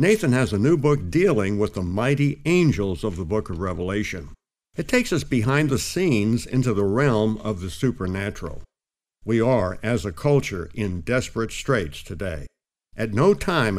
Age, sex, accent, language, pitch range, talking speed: 60-79, male, American, English, 100-140 Hz, 170 wpm